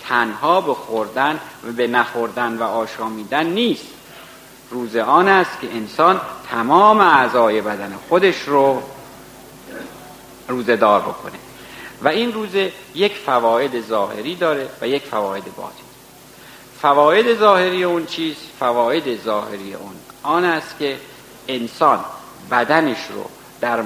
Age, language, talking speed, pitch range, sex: 50-69, Persian, 115 wpm, 115-155 Hz, male